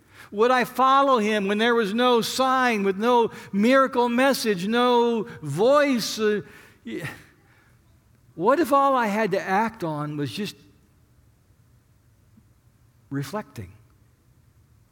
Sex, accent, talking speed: male, American, 105 wpm